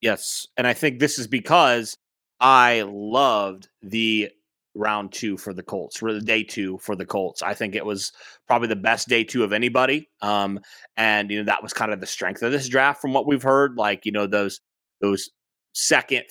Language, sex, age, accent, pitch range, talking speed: English, male, 30-49, American, 110-130 Hz, 205 wpm